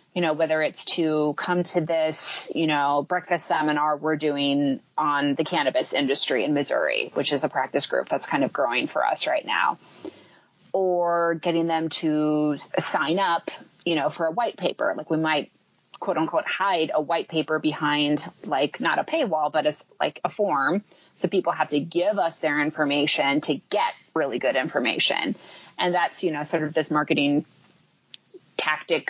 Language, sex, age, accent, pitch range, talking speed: English, female, 30-49, American, 150-175 Hz, 175 wpm